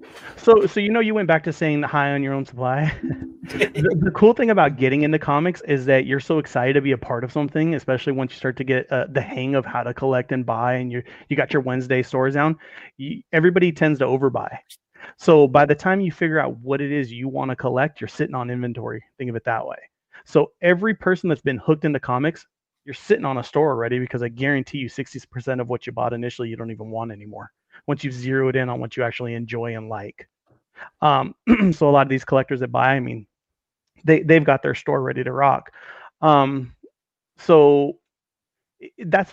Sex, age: male, 30-49